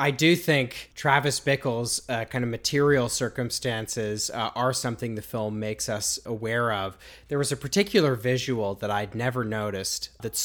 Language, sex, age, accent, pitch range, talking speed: English, male, 30-49, American, 105-130 Hz, 165 wpm